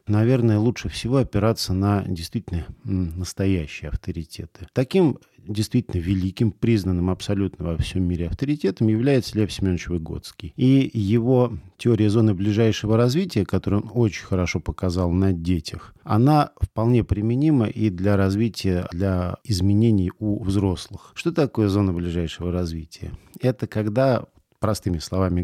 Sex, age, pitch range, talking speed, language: male, 40-59, 95-125 Hz, 125 wpm, Russian